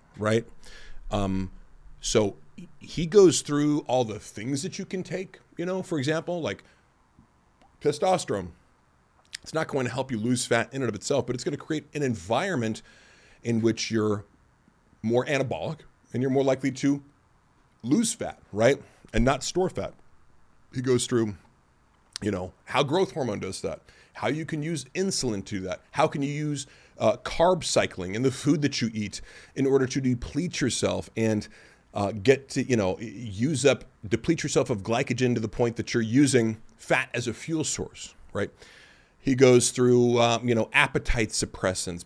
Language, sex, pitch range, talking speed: English, male, 105-140 Hz, 175 wpm